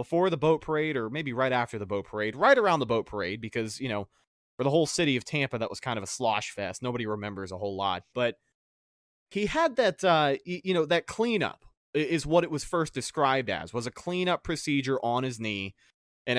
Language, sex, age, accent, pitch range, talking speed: English, male, 20-39, American, 130-180 Hz, 225 wpm